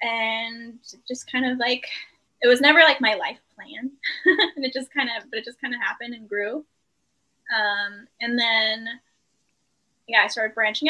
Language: English